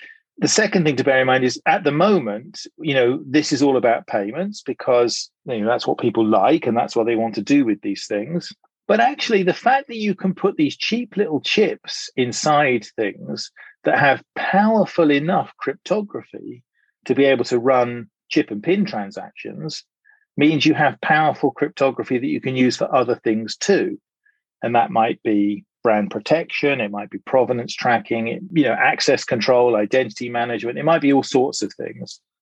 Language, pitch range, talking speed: English, 120-190 Hz, 185 wpm